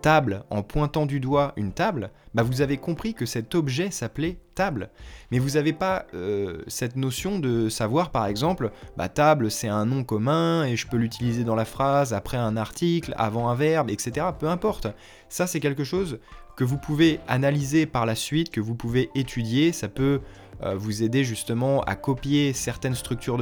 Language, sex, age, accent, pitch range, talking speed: French, male, 20-39, French, 115-150 Hz, 190 wpm